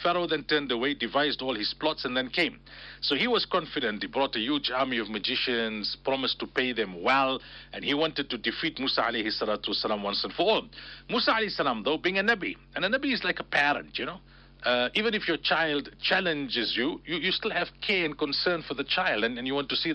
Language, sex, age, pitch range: English, male, 50-69, 130-195 Hz